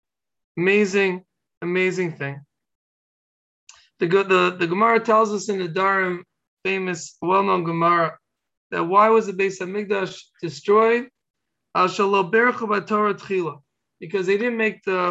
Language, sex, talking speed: English, male, 110 wpm